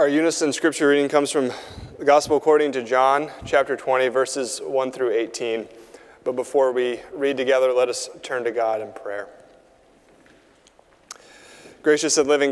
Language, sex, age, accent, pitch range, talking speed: English, male, 30-49, American, 120-145 Hz, 155 wpm